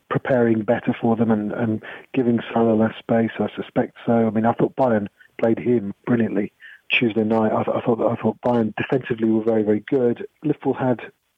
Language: English